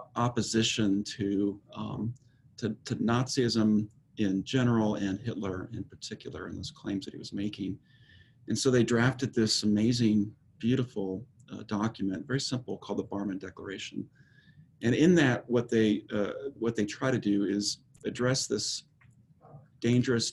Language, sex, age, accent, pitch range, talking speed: English, male, 40-59, American, 105-130 Hz, 145 wpm